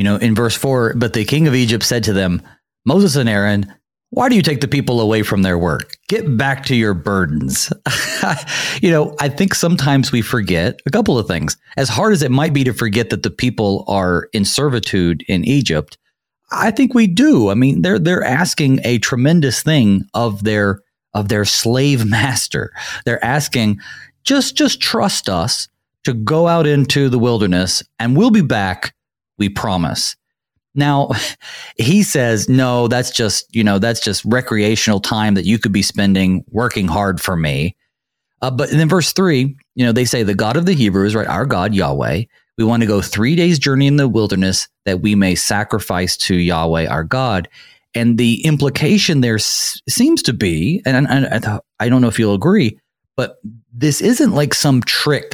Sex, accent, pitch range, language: male, American, 100-140 Hz, English